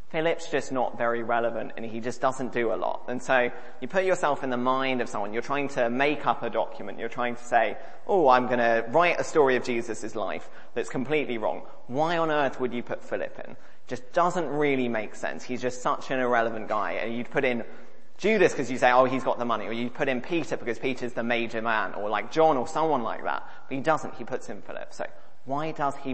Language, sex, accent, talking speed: English, male, British, 275 wpm